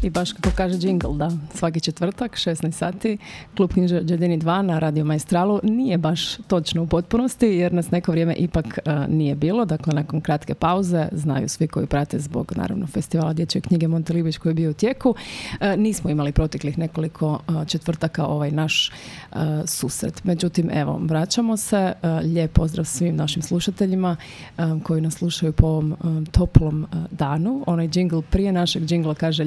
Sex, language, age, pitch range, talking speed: female, Croatian, 30-49, 155-185 Hz, 175 wpm